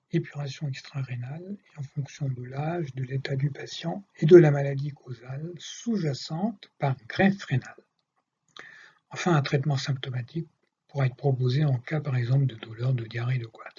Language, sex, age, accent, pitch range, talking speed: French, male, 60-79, French, 135-185 Hz, 155 wpm